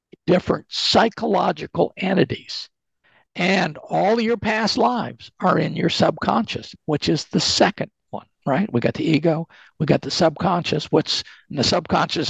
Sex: male